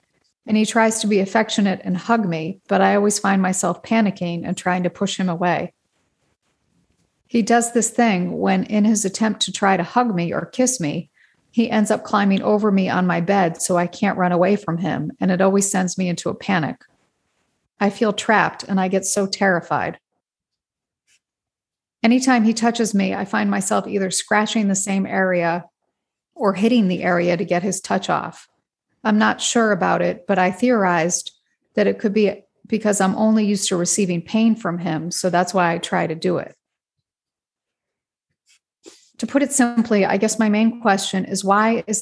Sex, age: female, 40-59